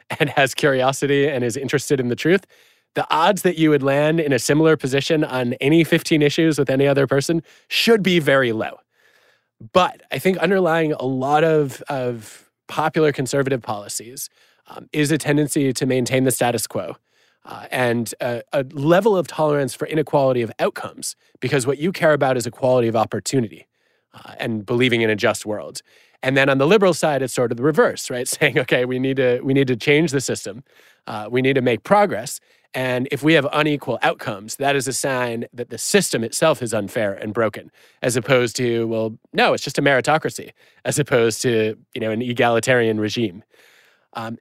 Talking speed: 195 wpm